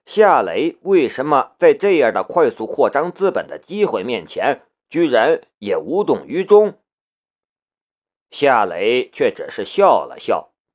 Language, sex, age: Chinese, male, 50-69